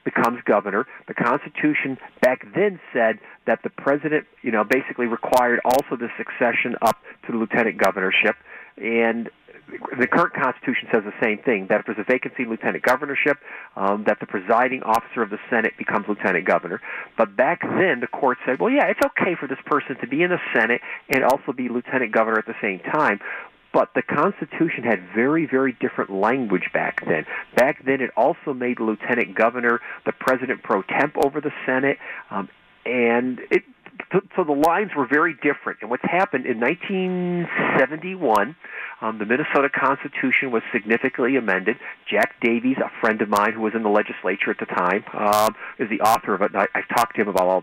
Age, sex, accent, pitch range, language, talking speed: 50-69, male, American, 115-150 Hz, English, 185 wpm